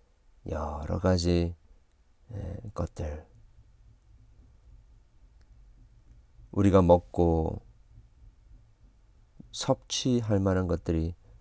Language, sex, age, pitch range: Korean, male, 40-59, 80-105 Hz